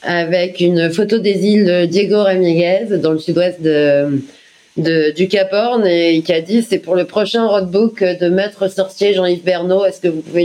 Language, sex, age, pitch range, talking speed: French, female, 30-49, 135-190 Hz, 195 wpm